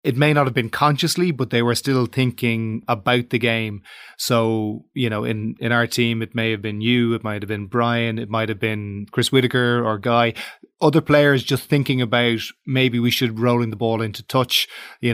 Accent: Irish